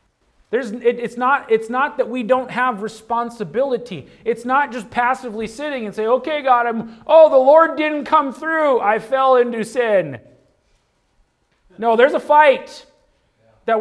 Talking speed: 155 wpm